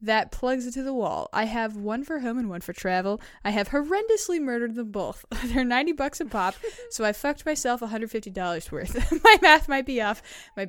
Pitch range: 200-275 Hz